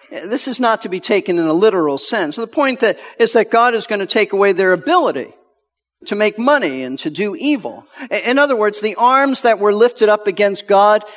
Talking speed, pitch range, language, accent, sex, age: 215 wpm, 185-260 Hz, English, American, male, 50-69